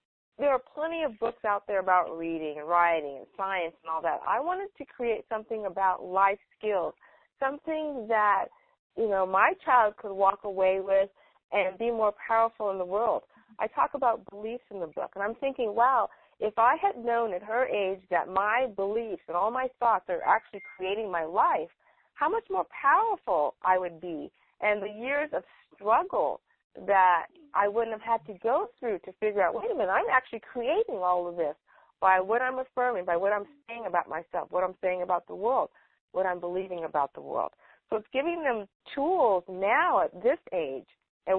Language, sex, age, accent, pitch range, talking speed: English, female, 40-59, American, 185-245 Hz, 195 wpm